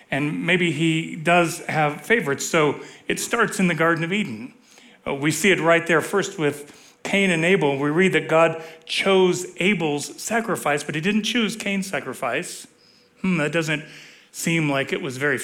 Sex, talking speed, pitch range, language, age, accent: male, 180 wpm, 145-195 Hz, English, 40-59, American